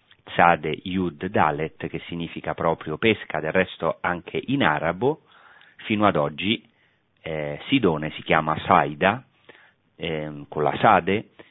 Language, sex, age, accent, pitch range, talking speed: Italian, male, 40-59, native, 80-95 Hz, 125 wpm